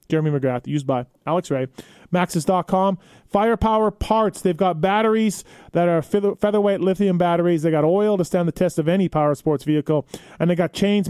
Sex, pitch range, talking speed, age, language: male, 145-180 Hz, 185 wpm, 30-49, English